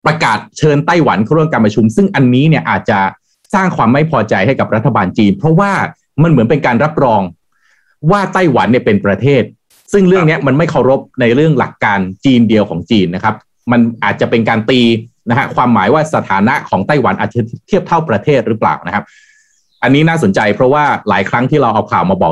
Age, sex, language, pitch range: 30-49, male, Thai, 110-160 Hz